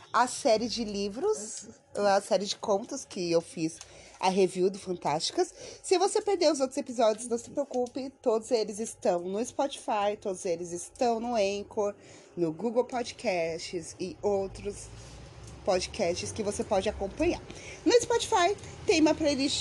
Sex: female